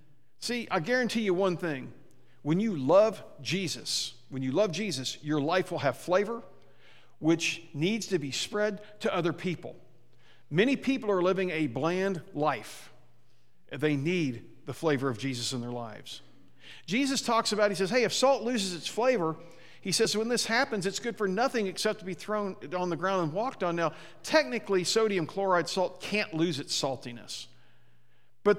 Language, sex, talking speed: English, male, 175 wpm